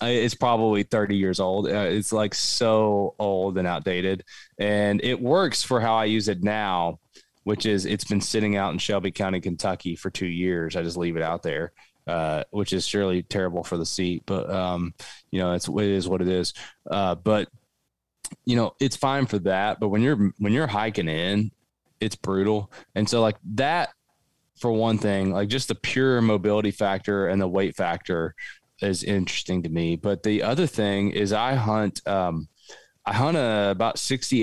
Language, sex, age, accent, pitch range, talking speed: English, male, 20-39, American, 95-110 Hz, 190 wpm